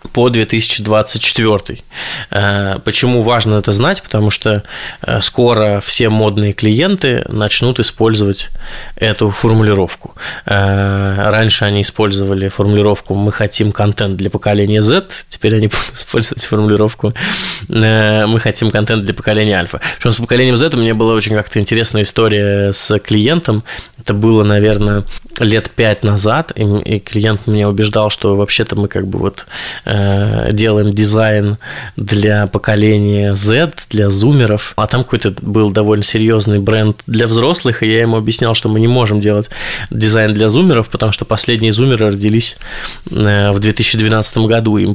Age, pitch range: 20-39, 105-115 Hz